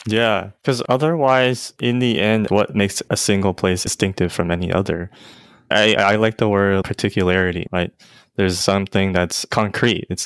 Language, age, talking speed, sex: English, 20-39, 160 wpm, male